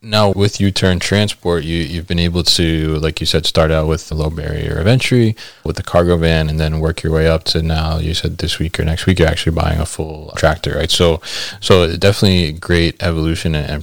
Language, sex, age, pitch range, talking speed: English, male, 20-39, 80-95 Hz, 235 wpm